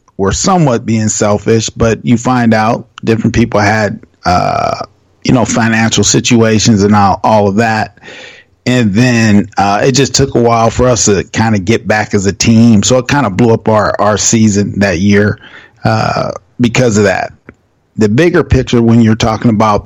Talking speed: 180 wpm